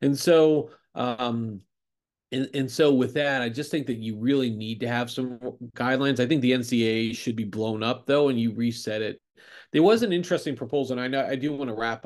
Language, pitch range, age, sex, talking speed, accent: English, 110-135 Hz, 30-49, male, 225 wpm, American